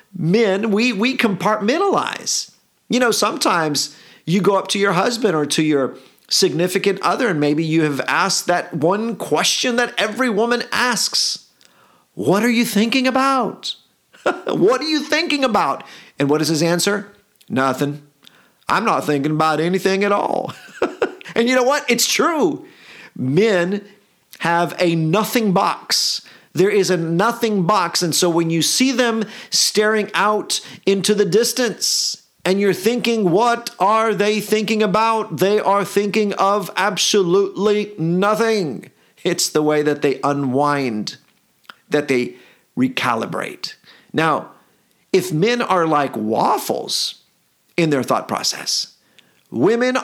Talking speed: 135 wpm